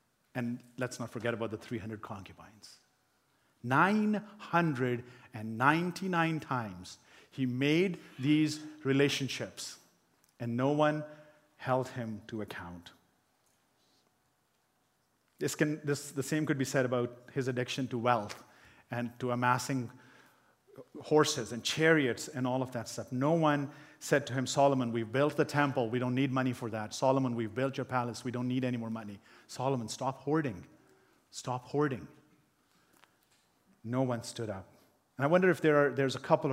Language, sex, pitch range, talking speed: English, male, 120-145 Hz, 150 wpm